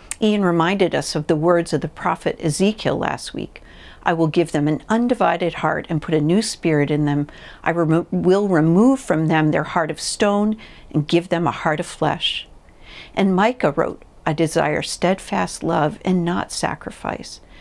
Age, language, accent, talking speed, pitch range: 50-69, English, American, 175 wpm, 160-205 Hz